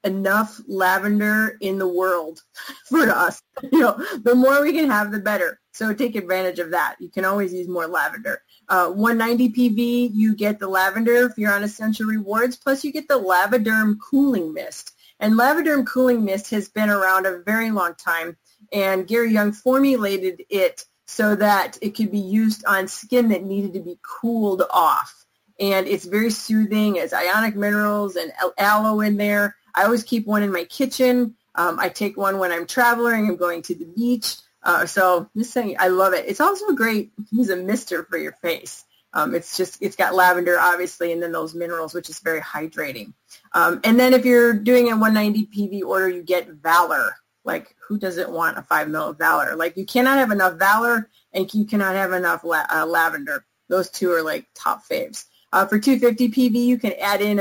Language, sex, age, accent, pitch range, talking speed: English, female, 30-49, American, 185-235 Hz, 200 wpm